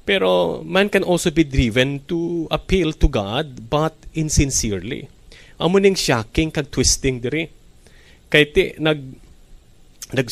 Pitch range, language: 115-155 Hz, Filipino